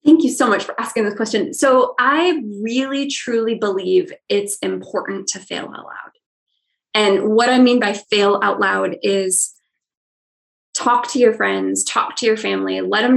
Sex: female